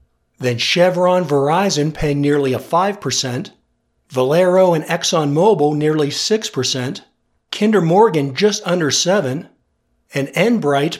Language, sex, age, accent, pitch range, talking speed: English, male, 50-69, American, 140-190 Hz, 105 wpm